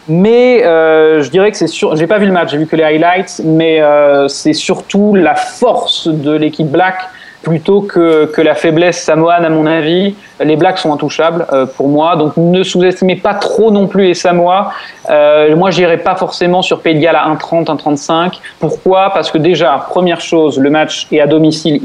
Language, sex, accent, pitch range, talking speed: French, male, French, 150-185 Hz, 205 wpm